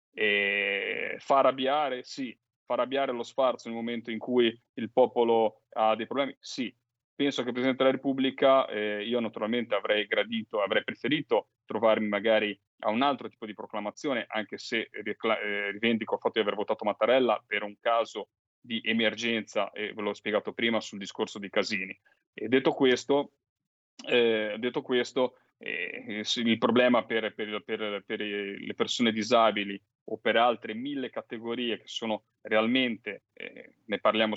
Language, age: Italian, 30-49